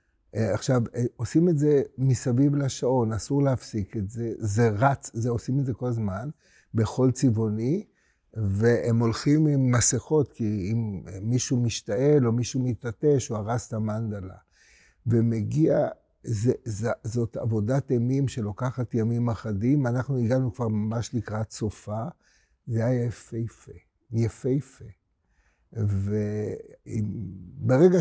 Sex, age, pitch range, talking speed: male, 60-79, 110-140 Hz, 120 wpm